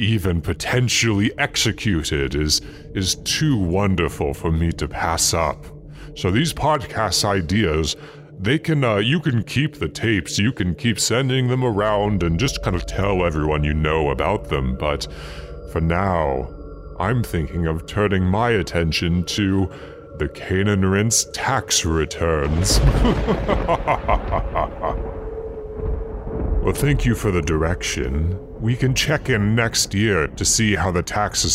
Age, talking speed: 30-49, 135 wpm